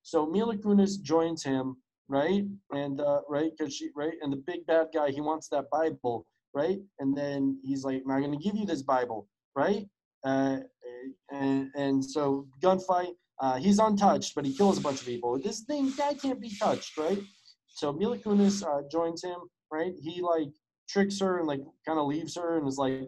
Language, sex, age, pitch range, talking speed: English, male, 20-39, 140-195 Hz, 200 wpm